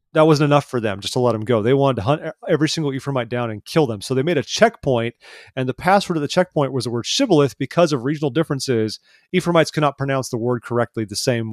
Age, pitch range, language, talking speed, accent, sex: 30-49, 110-145 Hz, English, 255 wpm, American, male